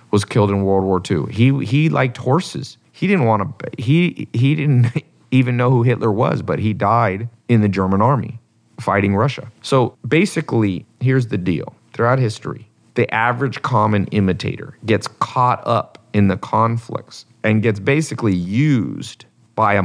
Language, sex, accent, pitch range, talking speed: English, male, American, 100-125 Hz, 165 wpm